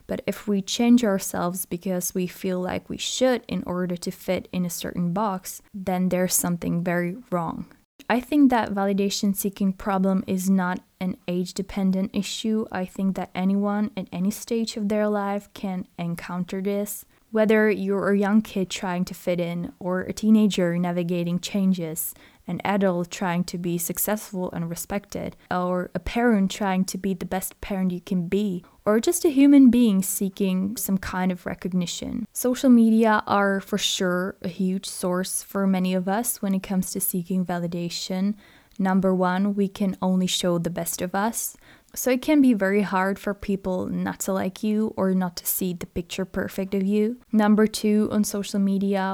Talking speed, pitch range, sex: 180 wpm, 185-210 Hz, female